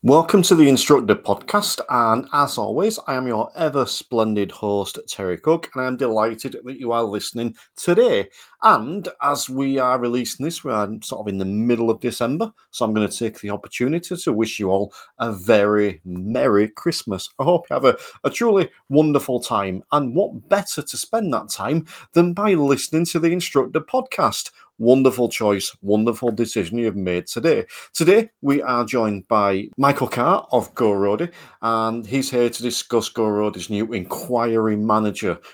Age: 40-59